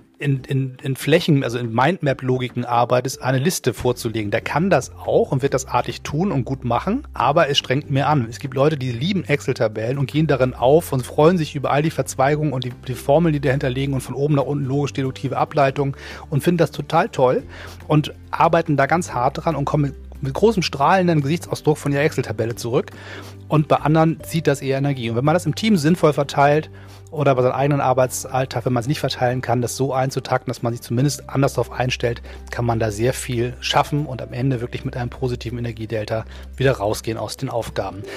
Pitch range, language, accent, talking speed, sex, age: 120-150 Hz, German, German, 215 wpm, male, 30-49